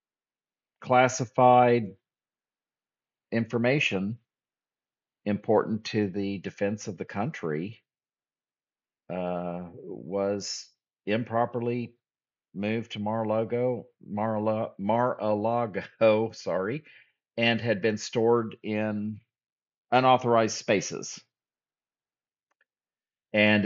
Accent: American